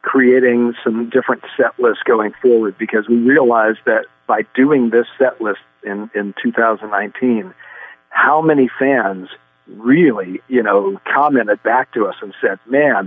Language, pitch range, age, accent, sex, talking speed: English, 110-130 Hz, 50-69, American, male, 150 wpm